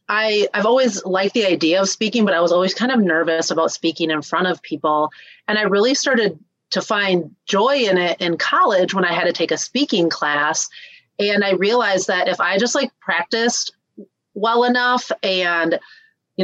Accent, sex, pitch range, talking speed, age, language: American, female, 165-215 Hz, 190 wpm, 30-49, English